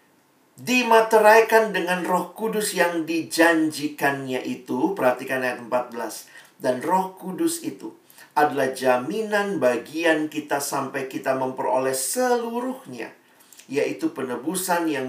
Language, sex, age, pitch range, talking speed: Indonesian, male, 40-59, 130-205 Hz, 100 wpm